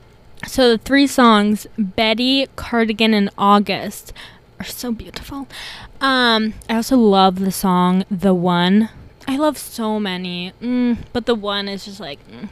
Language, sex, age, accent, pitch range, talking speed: English, female, 20-39, American, 195-225 Hz, 150 wpm